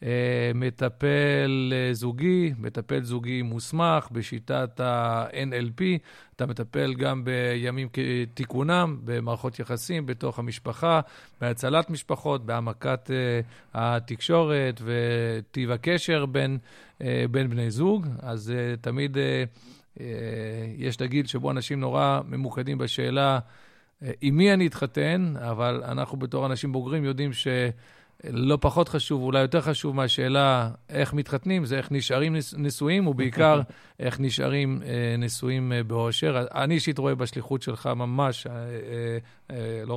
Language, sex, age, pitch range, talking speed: Hebrew, male, 50-69, 120-140 Hz, 120 wpm